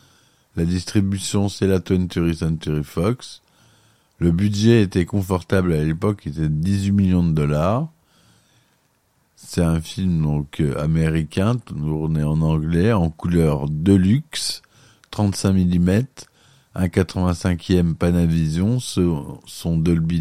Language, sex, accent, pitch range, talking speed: French, male, French, 80-100 Hz, 115 wpm